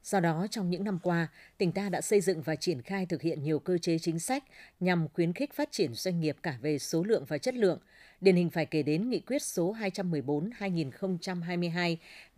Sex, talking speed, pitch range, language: female, 215 wpm, 165-200 Hz, Vietnamese